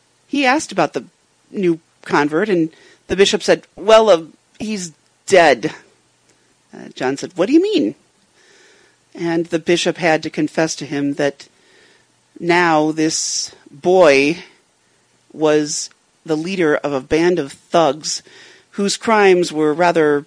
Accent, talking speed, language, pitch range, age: American, 135 wpm, English, 155-225 Hz, 40-59